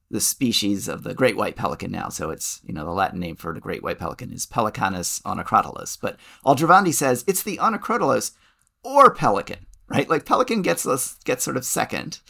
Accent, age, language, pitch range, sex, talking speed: American, 40-59, English, 120-150 Hz, male, 195 wpm